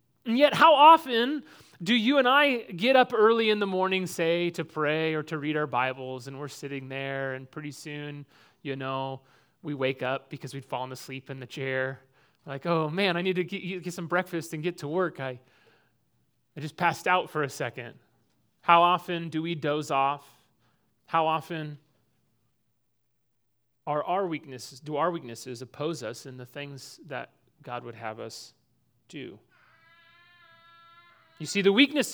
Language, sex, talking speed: English, male, 170 wpm